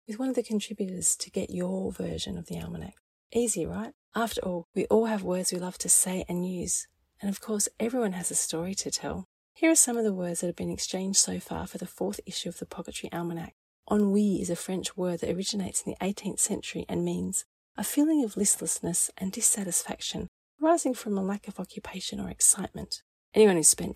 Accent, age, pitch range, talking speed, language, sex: Australian, 30-49, 170-215 Hz, 215 wpm, English, female